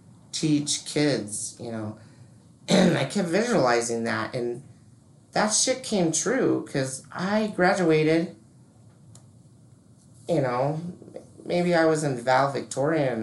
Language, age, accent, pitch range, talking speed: English, 30-49, American, 115-165 Hz, 110 wpm